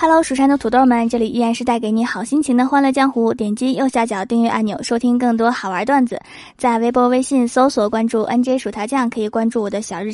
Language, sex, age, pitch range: Chinese, female, 20-39, 225-275 Hz